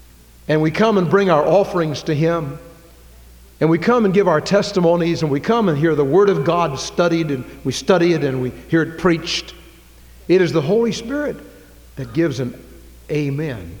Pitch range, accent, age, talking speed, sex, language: 120-180 Hz, American, 60-79, 190 wpm, male, English